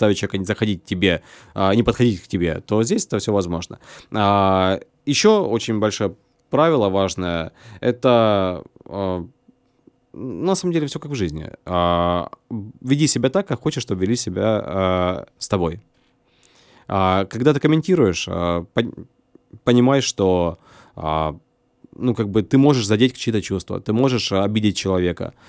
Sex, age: male, 20-39